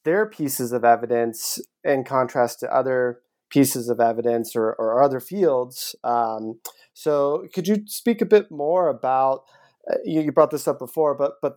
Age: 20-39